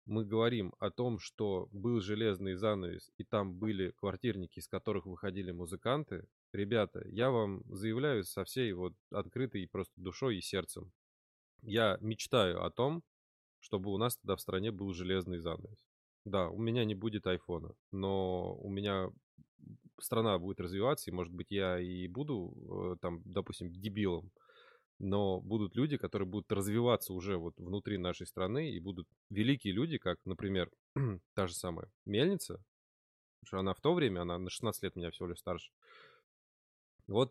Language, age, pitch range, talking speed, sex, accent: Russian, 20-39, 90-110 Hz, 160 wpm, male, native